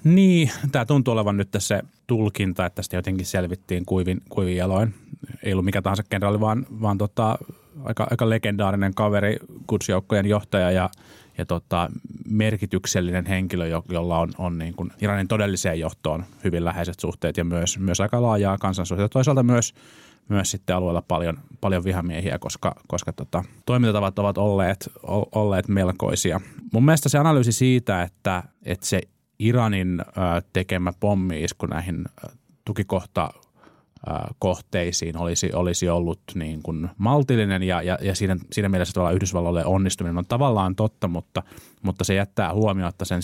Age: 30-49